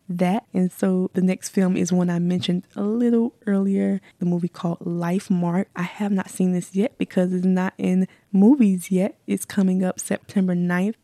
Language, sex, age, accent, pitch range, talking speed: English, female, 10-29, American, 170-190 Hz, 190 wpm